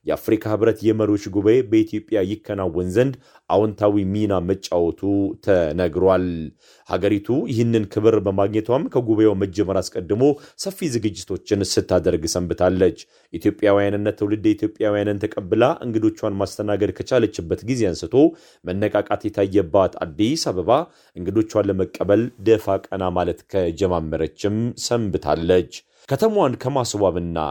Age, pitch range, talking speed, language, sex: 40-59, 95-110 Hz, 95 wpm, Amharic, male